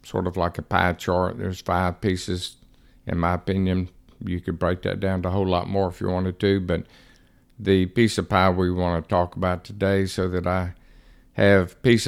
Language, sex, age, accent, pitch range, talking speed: English, male, 50-69, American, 90-100 Hz, 210 wpm